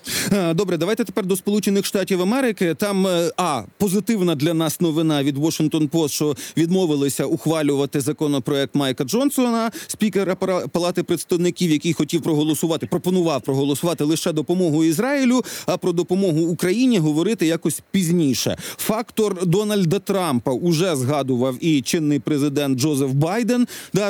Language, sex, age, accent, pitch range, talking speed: Ukrainian, male, 40-59, native, 155-195 Hz, 125 wpm